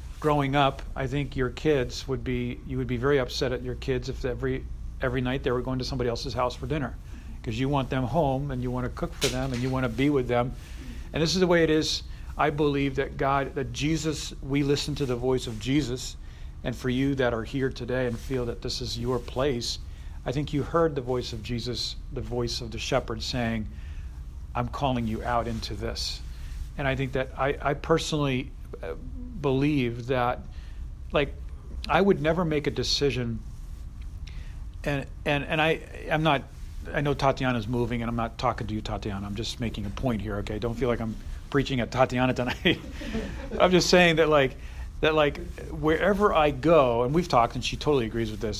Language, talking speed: English, 210 wpm